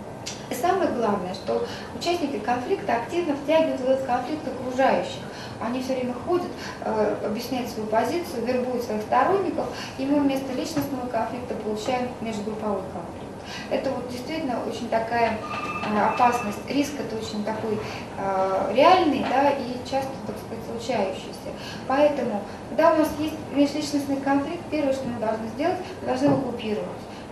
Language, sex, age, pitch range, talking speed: Russian, female, 20-39, 225-280 Hz, 135 wpm